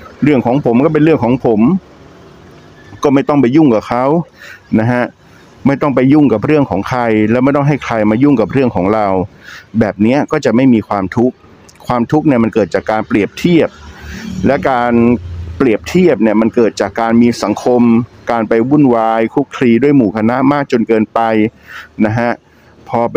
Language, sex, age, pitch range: Thai, male, 60-79, 115-135 Hz